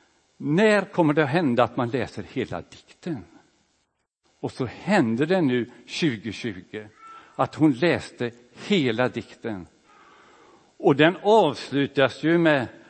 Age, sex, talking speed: 60-79, male, 120 wpm